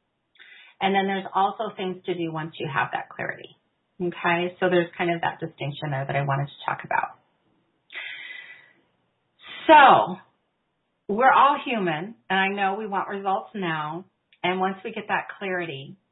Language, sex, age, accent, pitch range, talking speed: English, female, 30-49, American, 170-200 Hz, 160 wpm